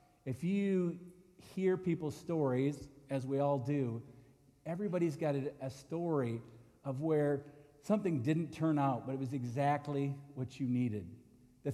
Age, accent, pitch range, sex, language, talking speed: 50-69, American, 130-160 Hz, male, English, 145 wpm